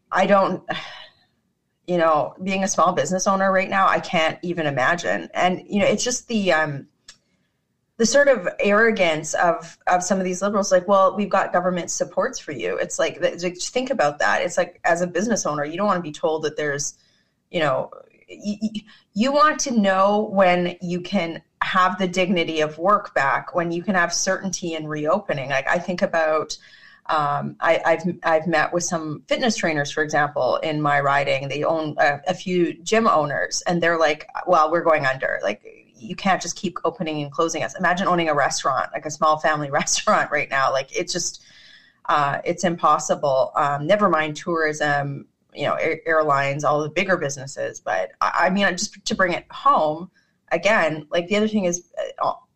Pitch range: 155-195 Hz